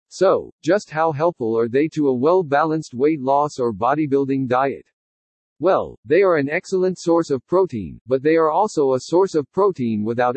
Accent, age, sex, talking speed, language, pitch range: American, 50-69, male, 180 wpm, English, 130-175 Hz